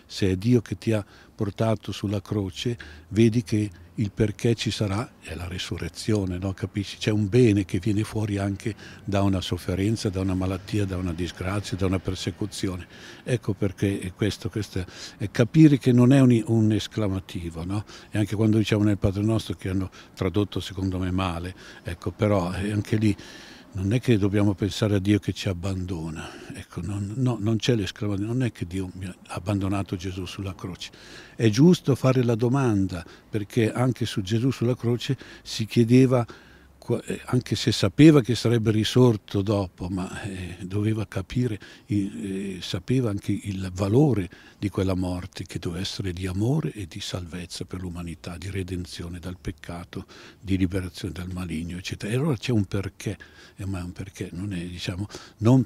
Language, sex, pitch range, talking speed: Italian, male, 95-115 Hz, 170 wpm